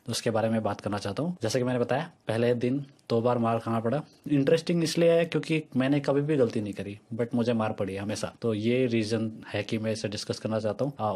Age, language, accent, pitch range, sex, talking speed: 20-39, Hindi, native, 110-125 Hz, male, 245 wpm